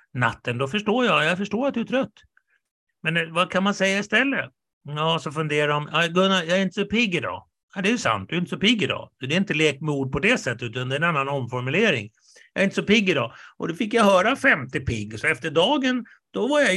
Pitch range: 130-180 Hz